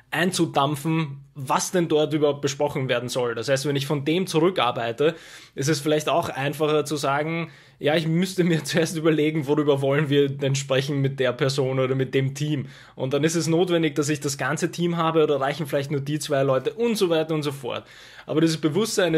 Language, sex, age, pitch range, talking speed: German, male, 20-39, 135-165 Hz, 210 wpm